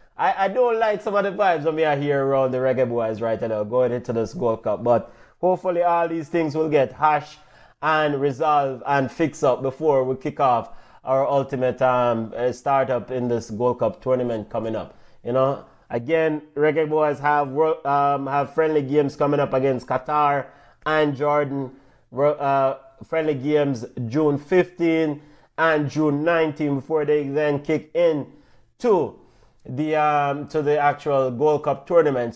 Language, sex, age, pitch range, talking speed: English, male, 30-49, 135-165 Hz, 165 wpm